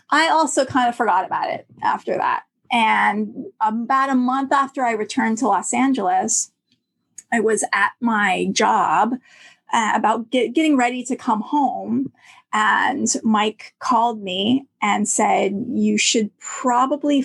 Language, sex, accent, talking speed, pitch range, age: English, female, American, 140 wpm, 210-255 Hz, 30-49